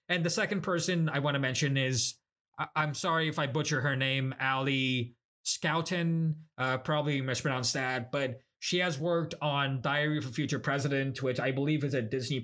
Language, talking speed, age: English, 185 wpm, 20-39